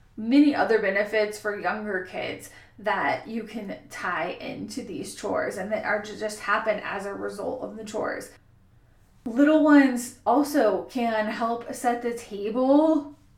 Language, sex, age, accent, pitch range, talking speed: English, female, 20-39, American, 215-265 Hz, 150 wpm